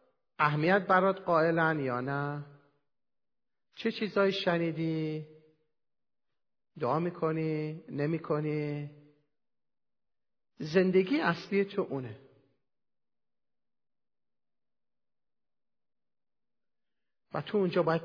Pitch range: 140-185 Hz